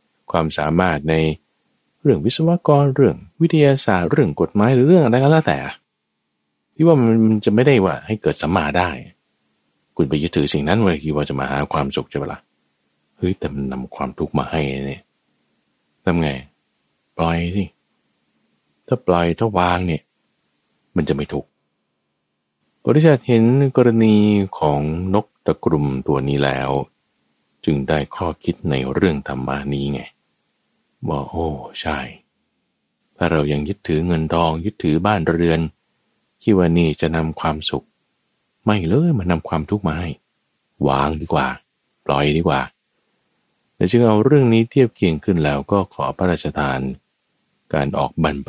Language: Thai